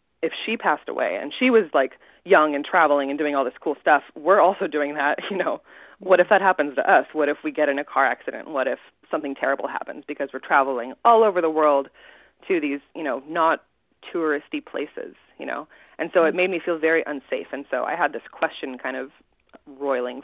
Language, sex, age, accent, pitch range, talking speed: English, female, 20-39, American, 150-195 Hz, 220 wpm